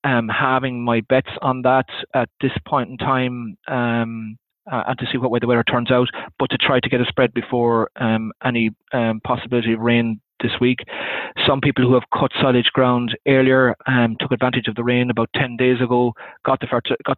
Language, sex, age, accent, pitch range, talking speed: English, male, 30-49, Irish, 110-125 Hz, 210 wpm